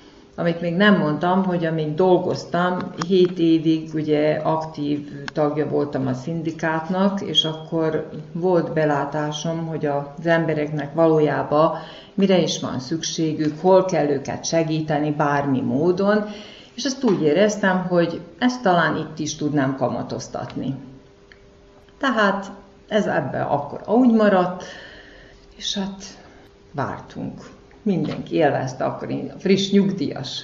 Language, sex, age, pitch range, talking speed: Hungarian, female, 50-69, 150-185 Hz, 115 wpm